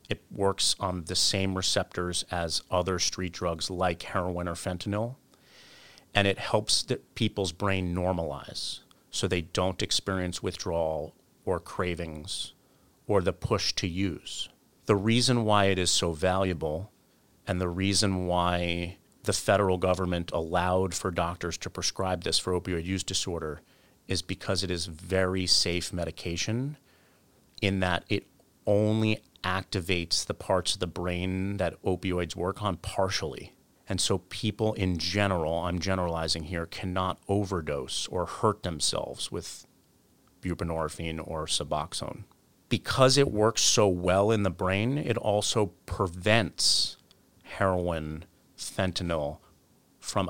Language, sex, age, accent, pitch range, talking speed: English, male, 40-59, American, 90-100 Hz, 130 wpm